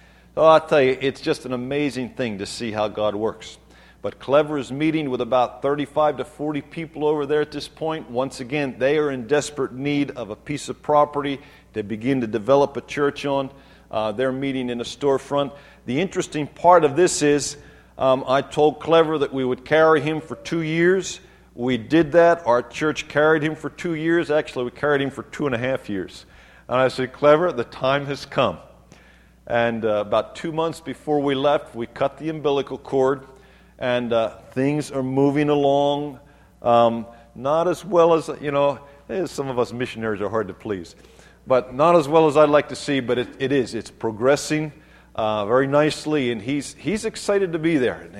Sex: male